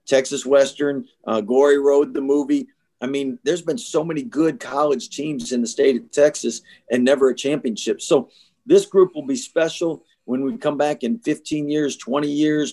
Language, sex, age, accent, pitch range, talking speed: English, male, 50-69, American, 125-150 Hz, 190 wpm